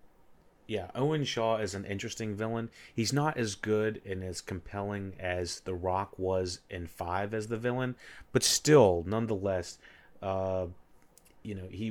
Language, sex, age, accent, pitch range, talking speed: English, male, 30-49, American, 90-105 Hz, 150 wpm